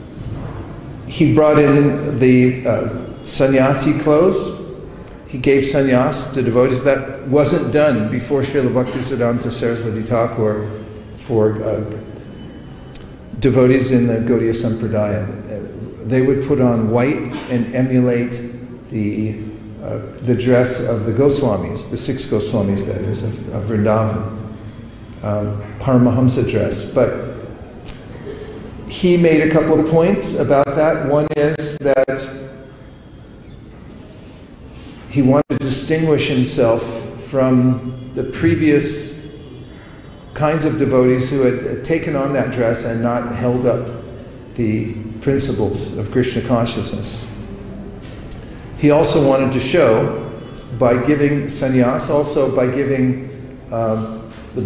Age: 50-69